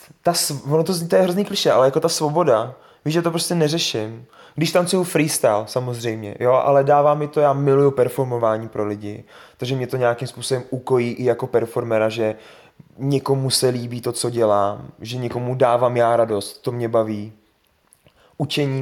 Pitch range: 110-140 Hz